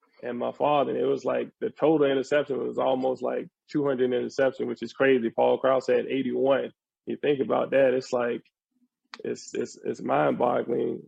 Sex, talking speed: male, 175 wpm